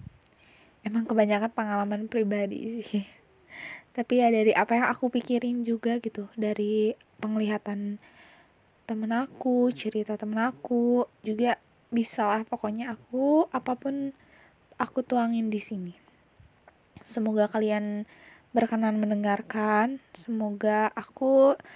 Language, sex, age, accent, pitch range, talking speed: Indonesian, female, 20-39, native, 215-245 Hz, 100 wpm